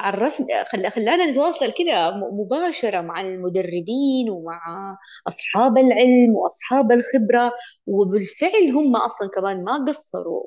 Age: 20-39